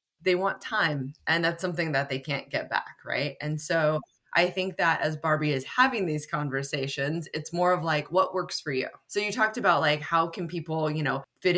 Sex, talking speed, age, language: female, 220 wpm, 20-39, English